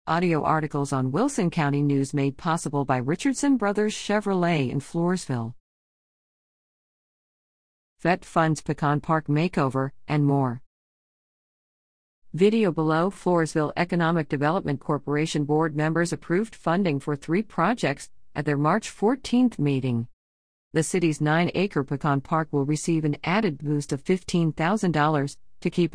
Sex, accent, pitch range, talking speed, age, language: female, American, 140-185 Hz, 125 wpm, 50-69, English